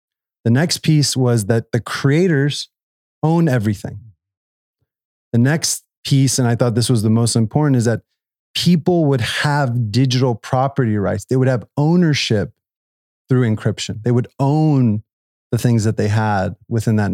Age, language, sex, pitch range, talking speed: 30-49, English, male, 105-130 Hz, 155 wpm